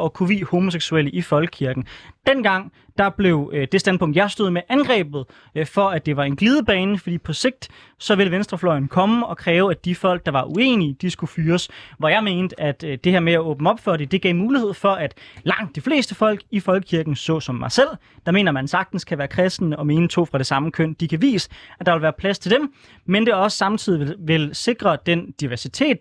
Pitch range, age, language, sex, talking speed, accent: 155-195 Hz, 20-39, Danish, male, 240 wpm, native